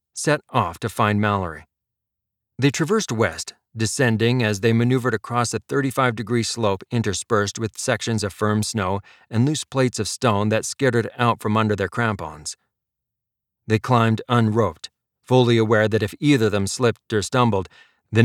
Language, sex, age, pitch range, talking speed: English, male, 40-59, 105-120 Hz, 160 wpm